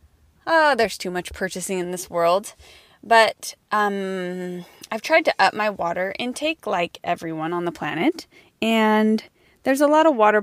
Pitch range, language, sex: 180-250 Hz, English, female